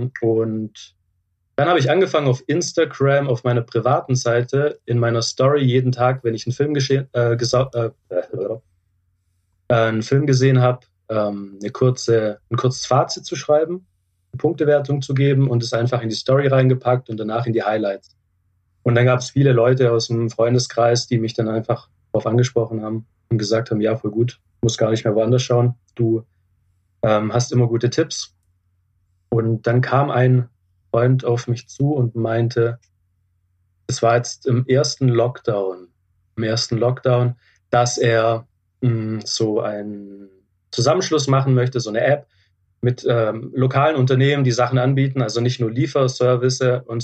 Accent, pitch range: German, 105-125 Hz